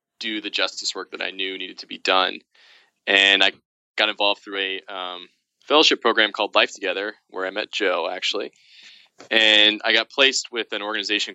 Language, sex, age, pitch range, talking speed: English, male, 20-39, 95-105 Hz, 185 wpm